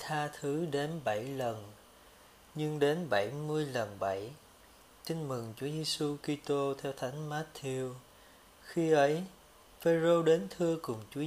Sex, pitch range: male, 115-160 Hz